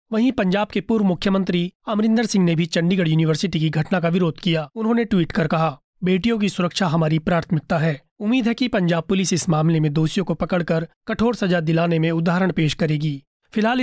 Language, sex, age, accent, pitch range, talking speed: Hindi, male, 30-49, native, 165-200 Hz, 195 wpm